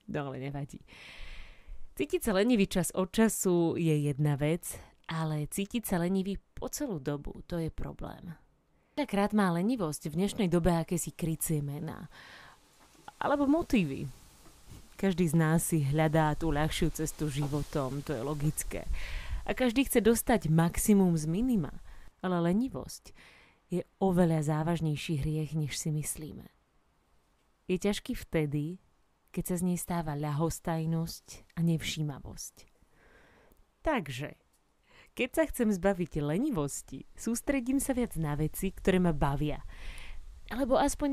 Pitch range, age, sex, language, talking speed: 155-215 Hz, 30-49, female, Slovak, 130 wpm